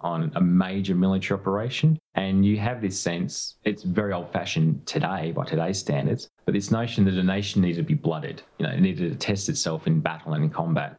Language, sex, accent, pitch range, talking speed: English, male, Australian, 85-125 Hz, 220 wpm